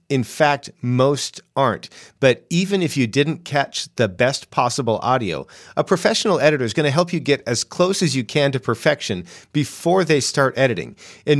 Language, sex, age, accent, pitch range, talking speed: English, male, 40-59, American, 115-145 Hz, 185 wpm